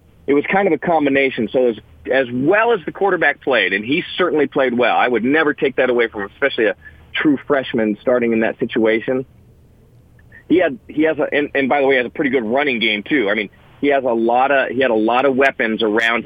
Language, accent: English, American